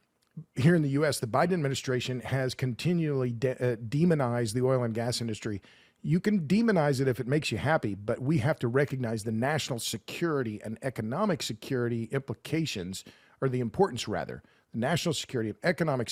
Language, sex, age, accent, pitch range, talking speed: English, male, 50-69, American, 120-150 Hz, 170 wpm